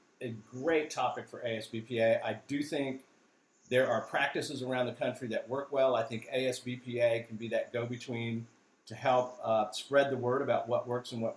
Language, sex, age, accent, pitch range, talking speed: English, male, 50-69, American, 115-145 Hz, 185 wpm